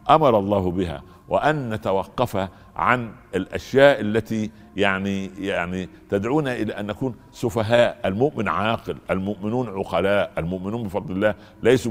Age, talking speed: 60-79, 115 wpm